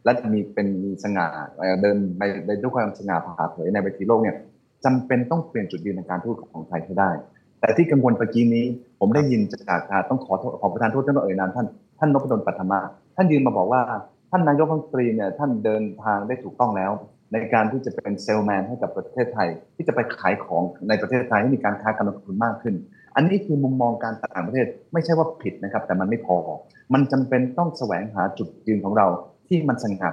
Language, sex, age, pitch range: Thai, male, 20-39, 100-130 Hz